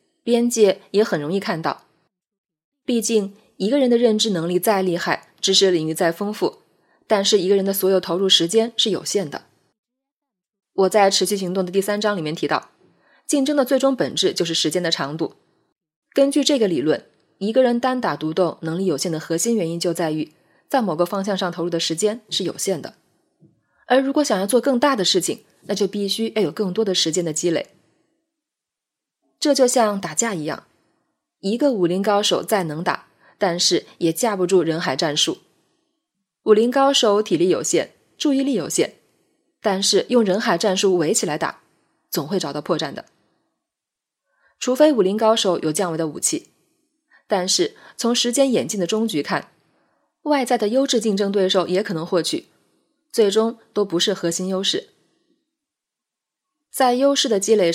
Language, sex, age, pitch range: Chinese, female, 20-39, 180-260 Hz